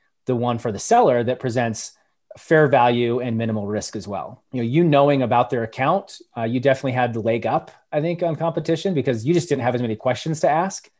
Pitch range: 115-140 Hz